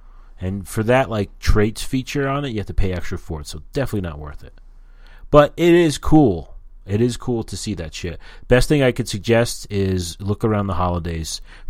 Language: English